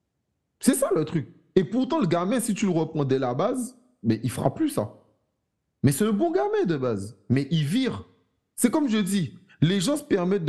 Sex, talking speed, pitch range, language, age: male, 215 wpm, 130-195 Hz, French, 30-49